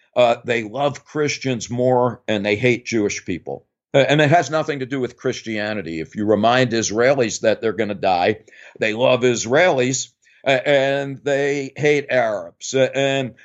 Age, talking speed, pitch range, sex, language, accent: 50-69, 170 wpm, 110-135 Hz, male, English, American